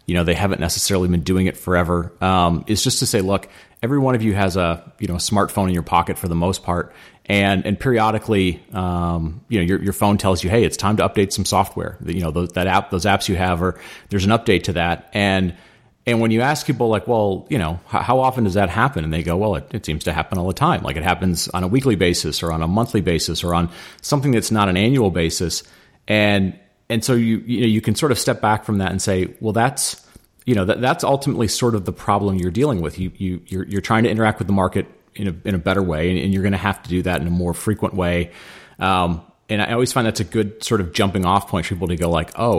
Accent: American